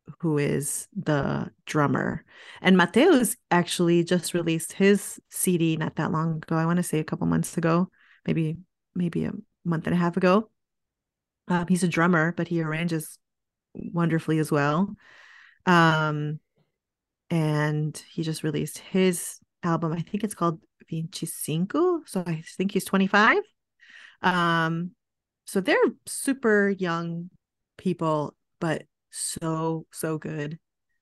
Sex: female